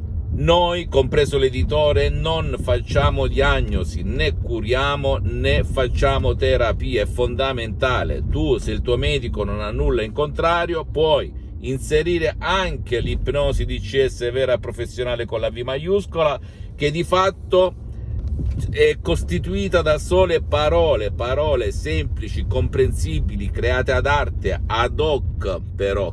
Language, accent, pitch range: Italian, native, 90-135 Hz